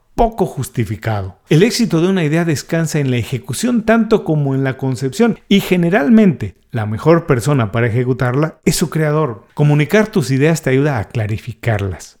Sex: male